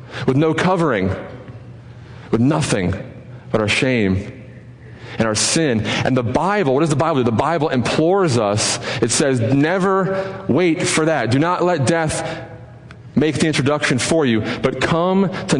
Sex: male